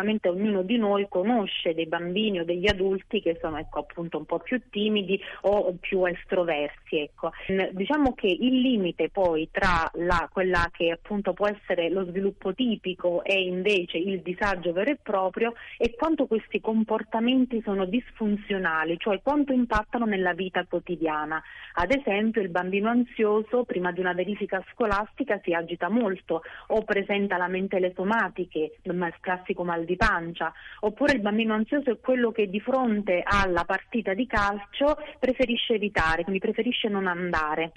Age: 30-49